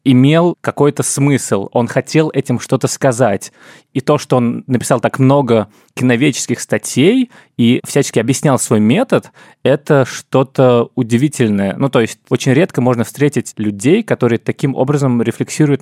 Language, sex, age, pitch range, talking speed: Russian, male, 20-39, 115-150 Hz, 140 wpm